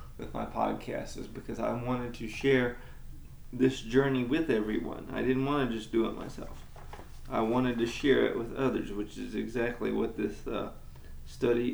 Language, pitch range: English, 115-140 Hz